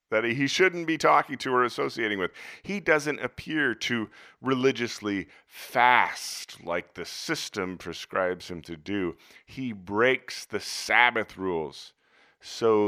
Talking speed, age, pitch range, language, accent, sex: 130 wpm, 40-59, 90-130 Hz, English, American, male